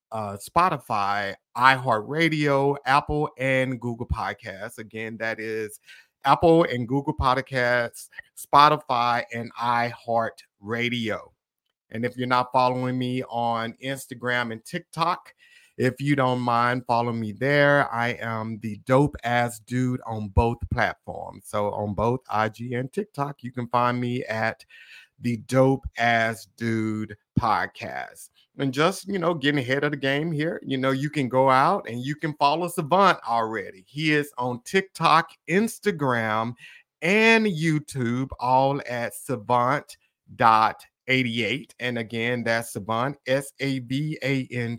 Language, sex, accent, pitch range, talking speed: English, male, American, 115-140 Hz, 130 wpm